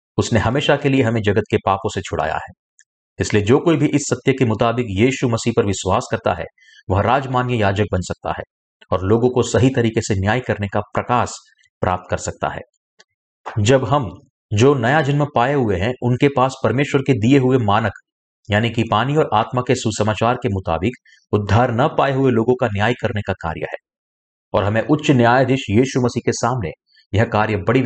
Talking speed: 195 wpm